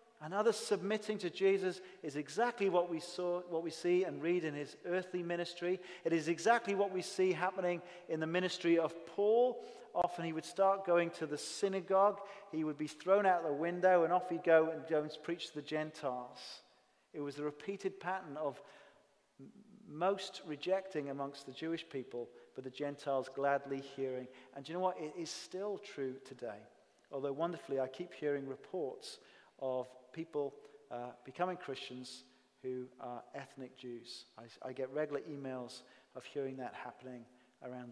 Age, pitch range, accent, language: 40-59, 145-200 Hz, British, English